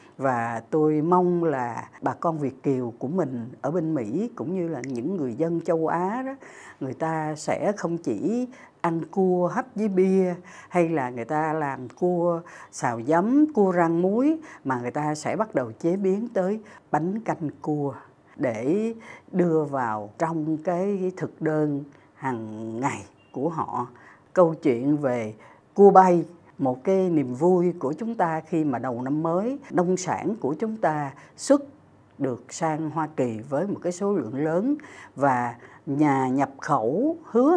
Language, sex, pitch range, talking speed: Vietnamese, female, 135-180 Hz, 165 wpm